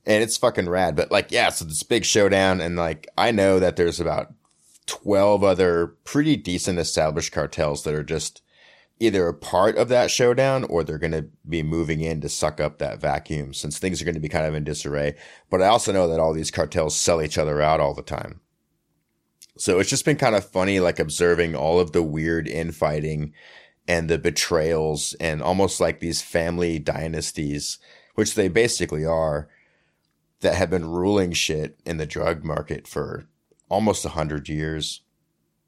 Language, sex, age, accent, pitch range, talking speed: English, male, 30-49, American, 75-95 Hz, 185 wpm